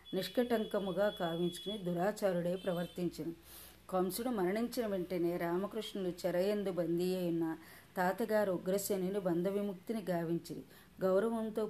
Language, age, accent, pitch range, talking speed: Telugu, 30-49, native, 175-205 Hz, 75 wpm